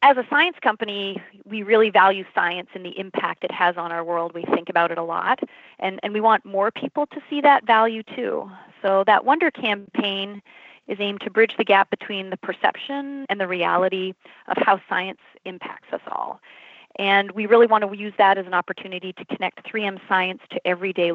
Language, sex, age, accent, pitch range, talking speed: English, female, 30-49, American, 185-225 Hz, 200 wpm